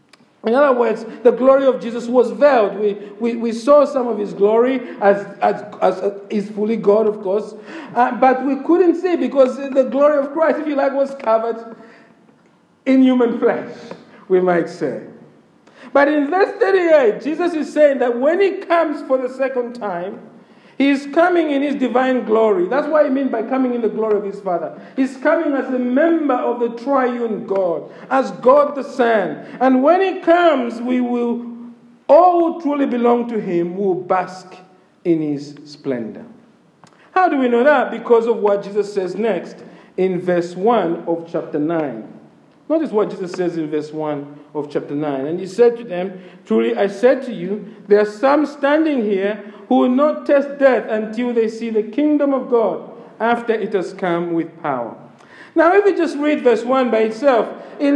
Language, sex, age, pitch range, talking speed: English, male, 50-69, 200-275 Hz, 185 wpm